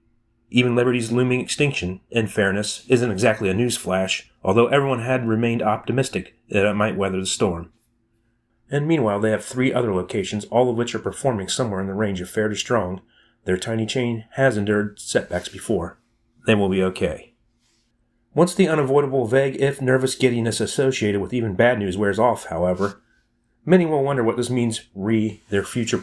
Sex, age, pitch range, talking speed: male, 30-49, 100-125 Hz, 180 wpm